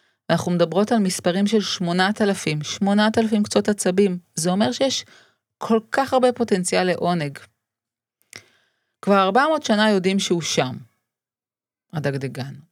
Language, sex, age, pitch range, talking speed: Hebrew, female, 30-49, 170-220 Hz, 125 wpm